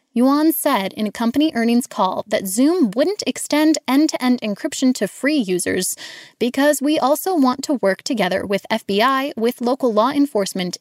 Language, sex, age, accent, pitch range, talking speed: English, female, 10-29, American, 225-305 Hz, 160 wpm